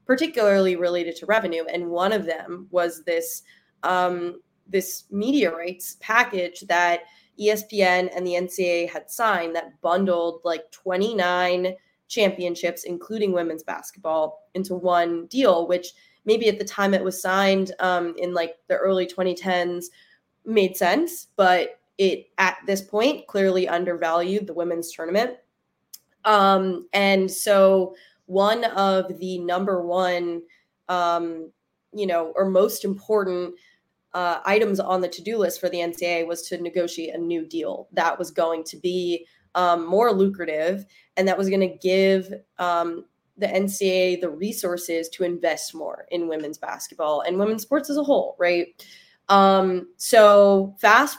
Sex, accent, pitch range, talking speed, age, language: female, American, 175-195 Hz, 145 wpm, 20-39, English